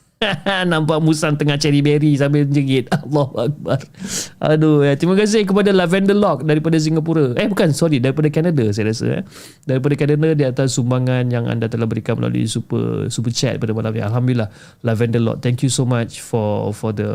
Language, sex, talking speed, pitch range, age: Malay, male, 180 wpm, 120-160 Hz, 20-39